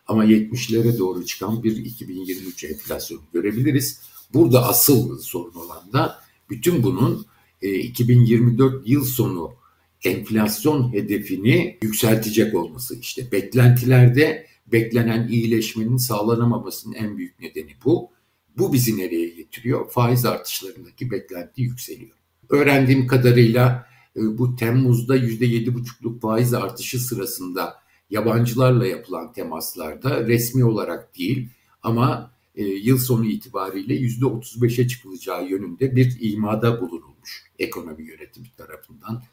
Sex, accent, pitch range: male, native, 110-125 Hz